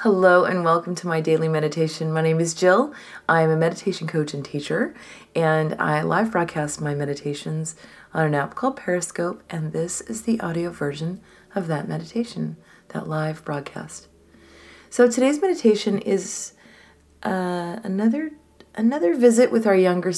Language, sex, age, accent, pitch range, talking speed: English, female, 30-49, American, 160-195 Hz, 155 wpm